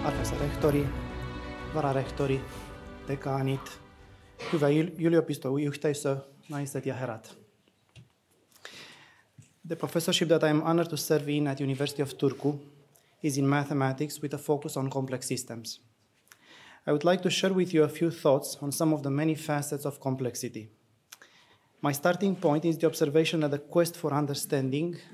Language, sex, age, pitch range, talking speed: Finnish, male, 20-39, 135-155 Hz, 120 wpm